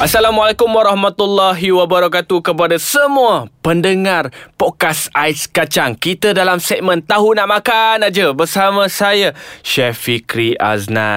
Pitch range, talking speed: 125-180 Hz, 115 wpm